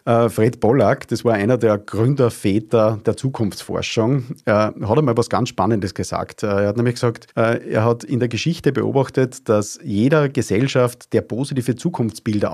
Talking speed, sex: 150 wpm, male